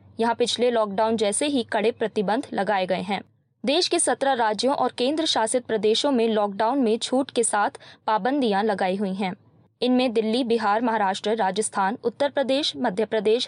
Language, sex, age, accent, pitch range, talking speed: Hindi, female, 20-39, native, 210-270 Hz, 165 wpm